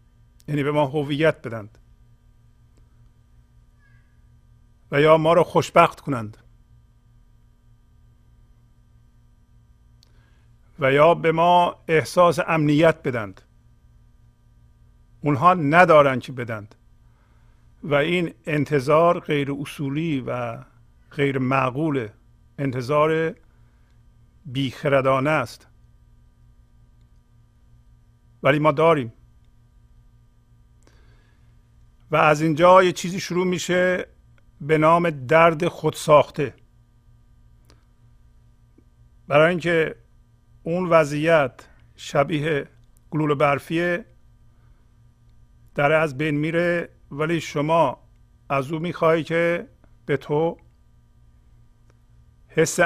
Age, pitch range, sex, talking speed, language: 50-69, 105-160 Hz, male, 80 wpm, Persian